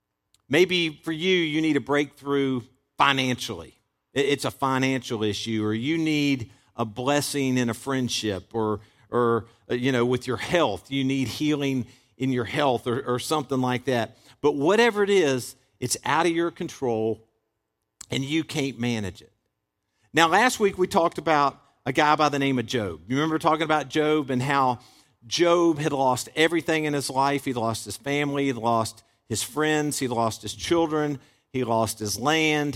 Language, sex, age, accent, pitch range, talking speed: English, male, 50-69, American, 115-155 Hz, 175 wpm